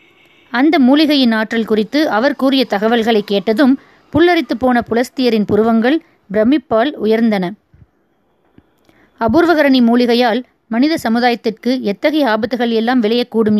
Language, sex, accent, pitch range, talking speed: Tamil, female, native, 220-275 Hz, 95 wpm